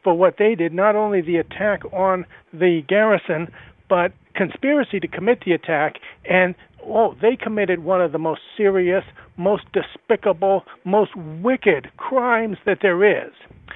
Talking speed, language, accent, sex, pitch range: 150 wpm, English, American, male, 180-215 Hz